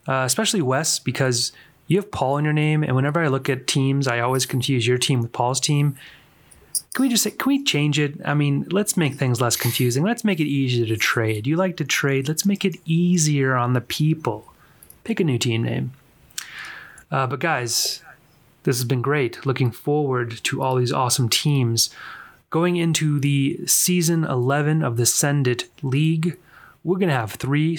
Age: 30-49